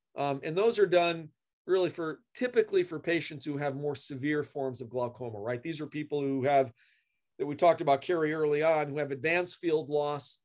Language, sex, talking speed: English, male, 200 wpm